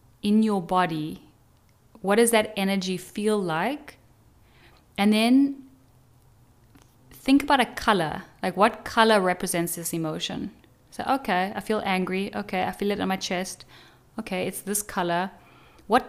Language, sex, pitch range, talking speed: English, female, 180-220 Hz, 140 wpm